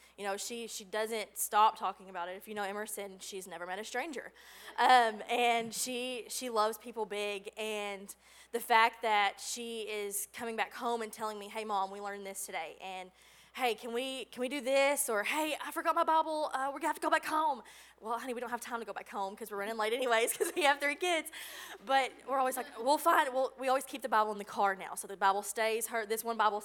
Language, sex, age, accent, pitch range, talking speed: English, female, 20-39, American, 205-250 Hz, 250 wpm